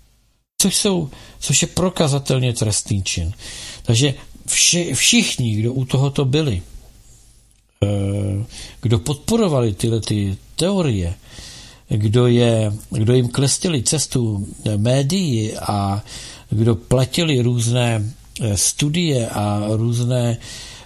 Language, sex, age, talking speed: Czech, male, 60-79, 85 wpm